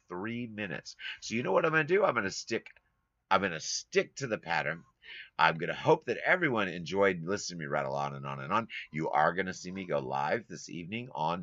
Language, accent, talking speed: English, American, 250 wpm